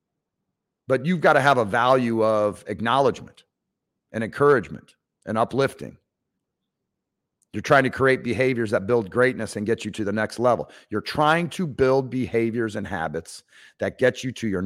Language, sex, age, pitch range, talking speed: English, male, 40-59, 105-125 Hz, 165 wpm